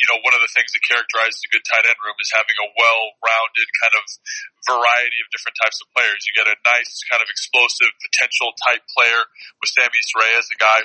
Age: 30-49